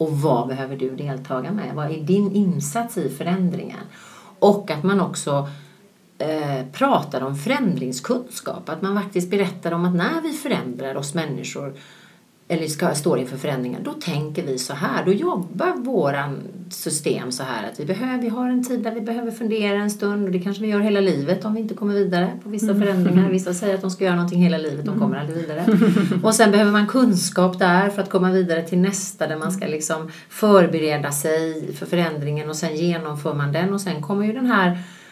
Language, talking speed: Swedish, 200 wpm